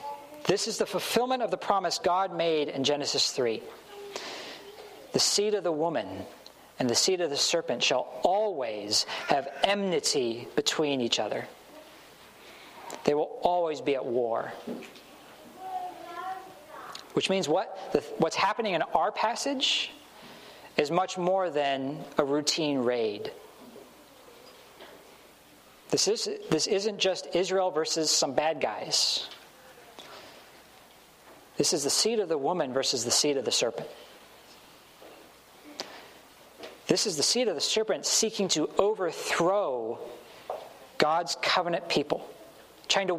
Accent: American